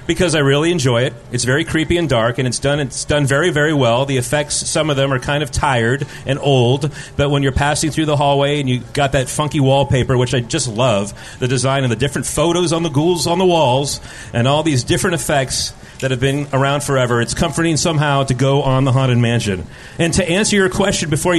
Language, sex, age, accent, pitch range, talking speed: English, male, 40-59, American, 135-180 Hz, 235 wpm